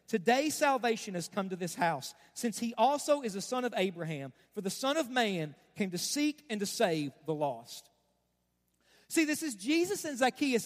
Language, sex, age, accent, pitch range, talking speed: English, male, 40-59, American, 200-295 Hz, 190 wpm